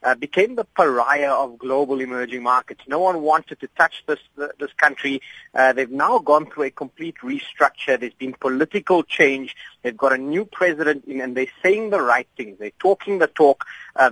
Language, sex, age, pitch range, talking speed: English, male, 30-49, 135-195 Hz, 195 wpm